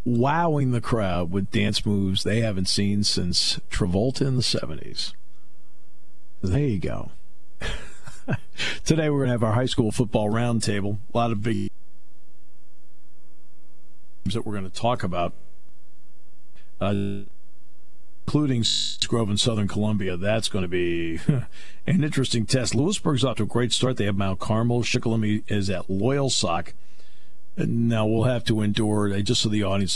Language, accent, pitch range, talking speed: English, American, 95-120 Hz, 150 wpm